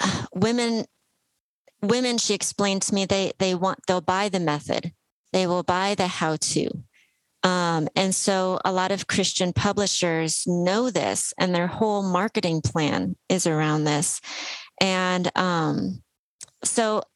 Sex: female